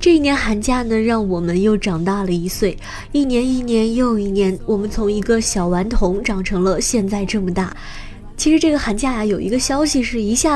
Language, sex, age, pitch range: Chinese, female, 20-39, 205-260 Hz